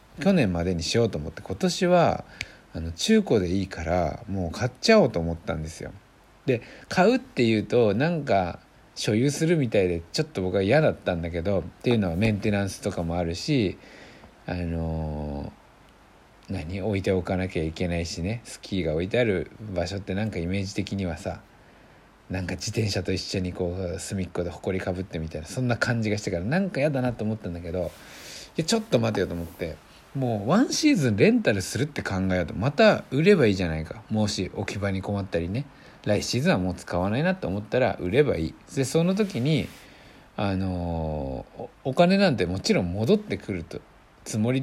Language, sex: Japanese, male